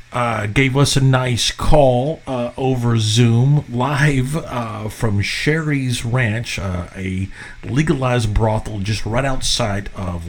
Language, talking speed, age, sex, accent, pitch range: English, 130 wpm, 40-59, male, American, 105-130 Hz